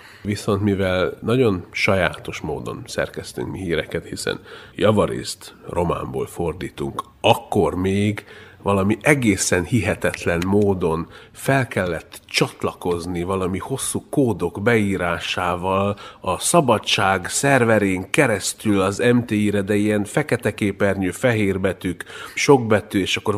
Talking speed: 100 wpm